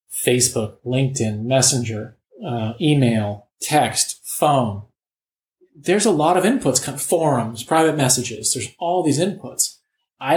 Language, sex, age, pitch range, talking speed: English, male, 30-49, 120-145 Hz, 115 wpm